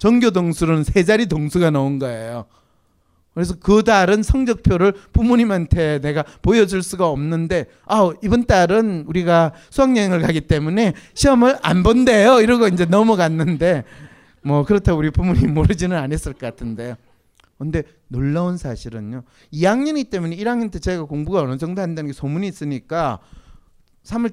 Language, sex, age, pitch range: Korean, male, 30-49, 125-195 Hz